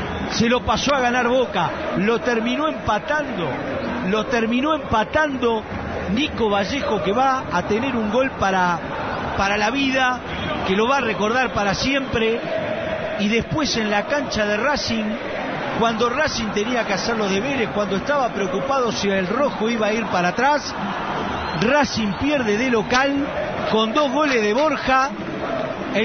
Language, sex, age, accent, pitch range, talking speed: Spanish, male, 40-59, Argentinian, 210-275 Hz, 150 wpm